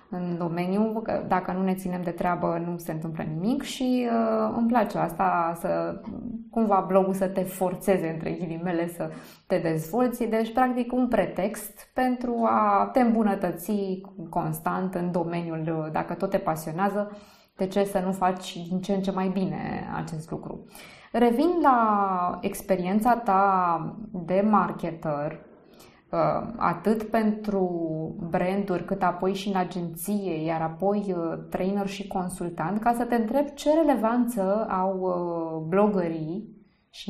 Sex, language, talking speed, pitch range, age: female, Romanian, 135 wpm, 175-215 Hz, 20-39